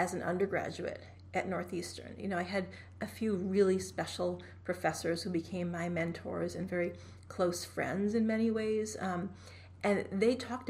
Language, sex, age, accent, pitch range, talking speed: English, female, 40-59, American, 175-200 Hz, 165 wpm